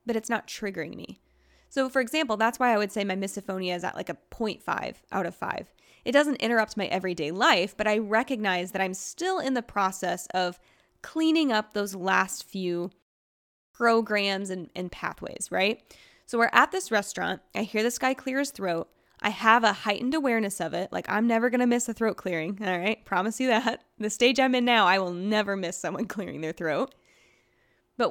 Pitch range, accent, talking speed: 185-235 Hz, American, 205 wpm